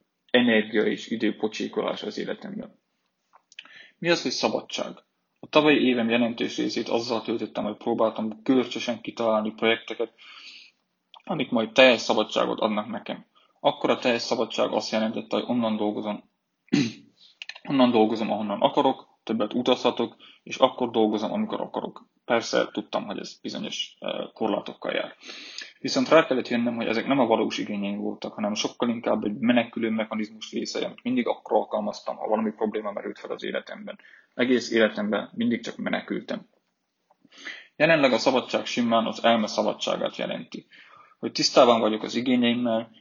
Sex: male